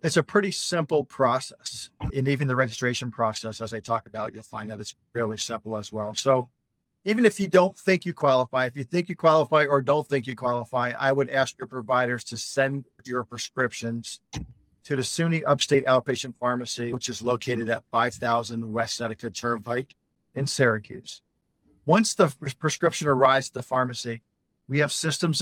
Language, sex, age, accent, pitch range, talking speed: English, male, 50-69, American, 120-145 Hz, 175 wpm